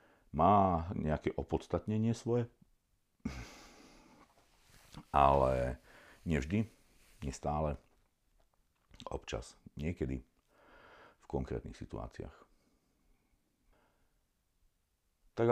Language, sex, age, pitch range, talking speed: Slovak, male, 50-69, 70-95 Hz, 50 wpm